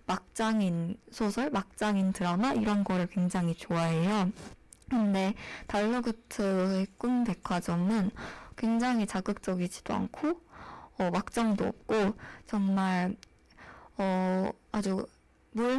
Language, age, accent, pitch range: Korean, 20-39, native, 185-235 Hz